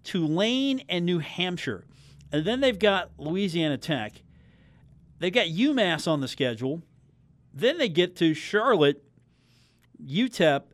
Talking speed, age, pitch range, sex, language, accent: 130 wpm, 40-59, 115-175 Hz, male, English, American